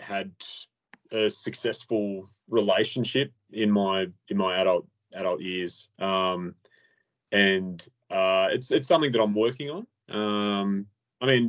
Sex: male